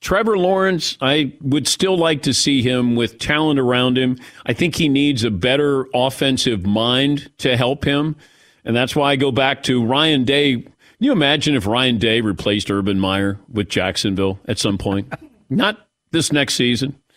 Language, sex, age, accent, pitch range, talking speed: English, male, 50-69, American, 115-150 Hz, 180 wpm